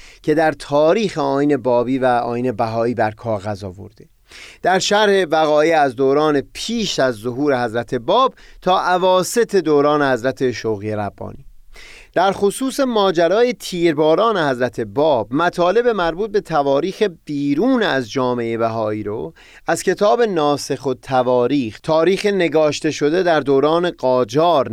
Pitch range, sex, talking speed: 125-175 Hz, male, 130 wpm